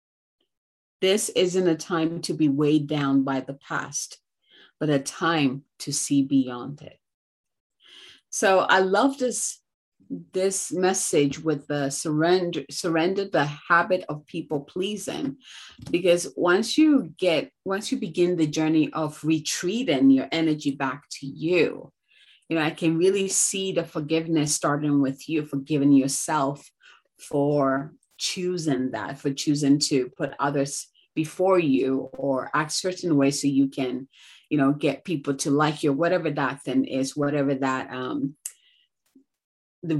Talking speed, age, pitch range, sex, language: 140 wpm, 30-49, 140-180 Hz, female, English